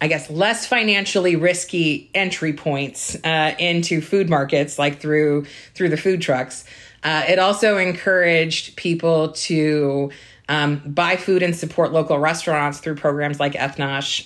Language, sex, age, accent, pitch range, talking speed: English, female, 30-49, American, 140-175 Hz, 145 wpm